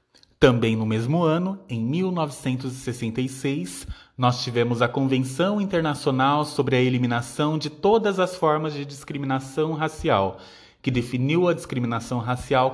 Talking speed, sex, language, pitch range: 125 wpm, male, Portuguese, 130-175 Hz